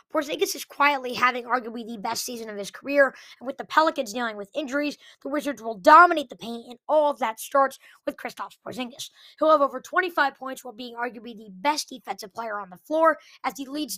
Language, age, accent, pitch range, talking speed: English, 20-39, American, 230-295 Hz, 215 wpm